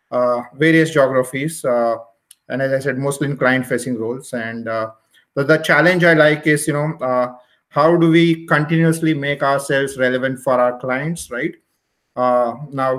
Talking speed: 165 wpm